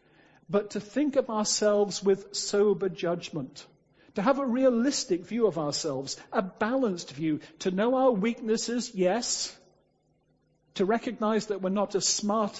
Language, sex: English, male